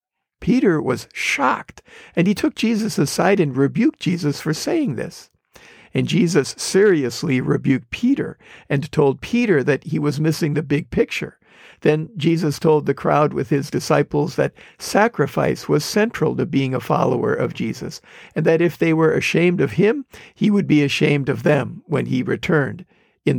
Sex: male